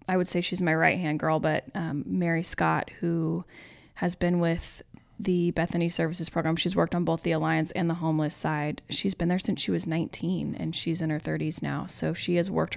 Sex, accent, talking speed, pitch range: female, American, 220 wpm, 160-195 Hz